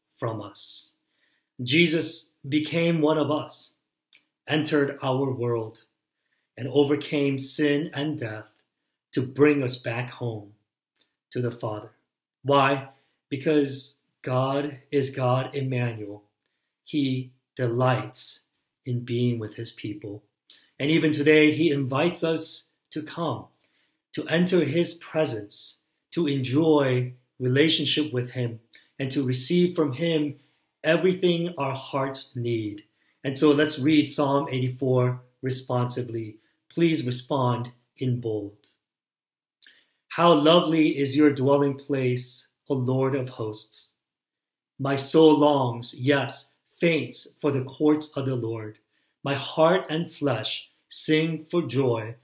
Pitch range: 125-155 Hz